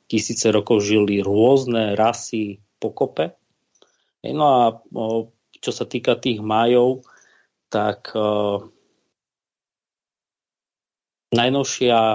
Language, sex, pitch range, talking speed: Slovak, male, 105-115 Hz, 75 wpm